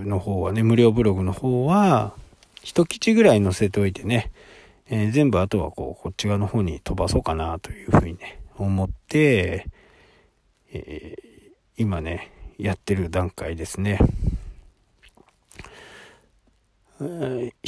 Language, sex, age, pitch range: Japanese, male, 40-59, 95-145 Hz